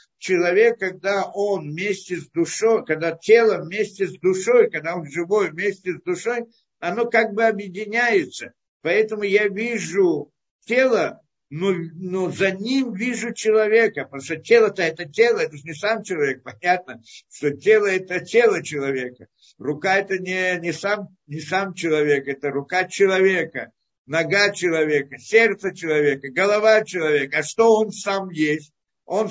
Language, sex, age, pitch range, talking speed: Russian, male, 60-79, 175-225 Hz, 140 wpm